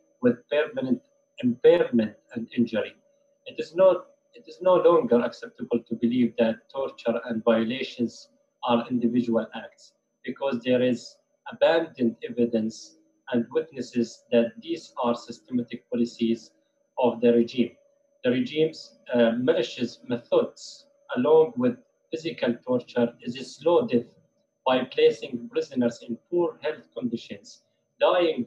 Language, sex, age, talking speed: English, male, 40-59, 120 wpm